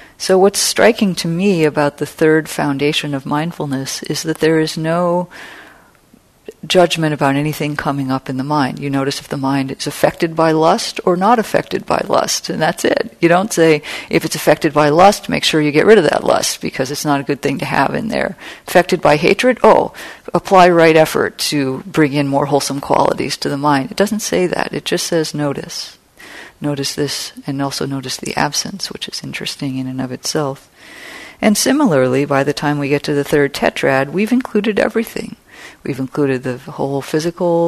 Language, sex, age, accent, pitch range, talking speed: English, female, 50-69, American, 140-175 Hz, 195 wpm